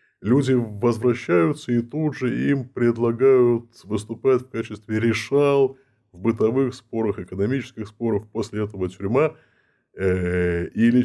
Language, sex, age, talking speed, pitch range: Russian, male, 20-39, 115 wpm, 100-135 Hz